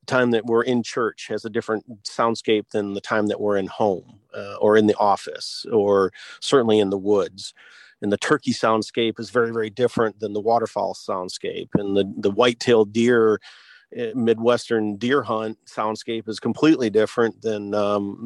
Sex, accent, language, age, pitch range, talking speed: male, American, English, 40-59, 110-130 Hz, 175 wpm